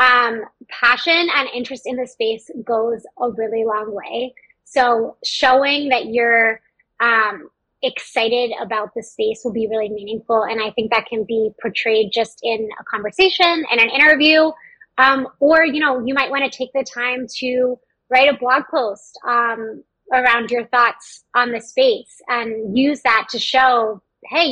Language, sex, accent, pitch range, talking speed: English, female, American, 225-260 Hz, 165 wpm